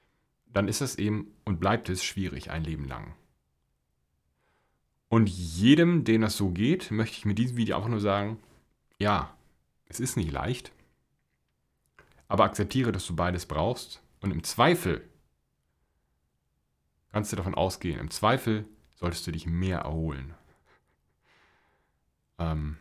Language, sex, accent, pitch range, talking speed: German, male, German, 80-110 Hz, 135 wpm